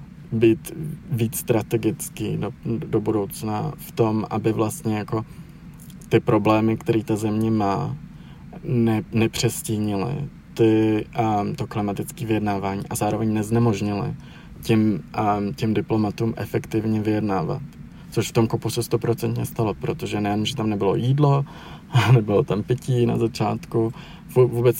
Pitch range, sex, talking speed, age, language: 110-125 Hz, male, 125 wpm, 20-39, Czech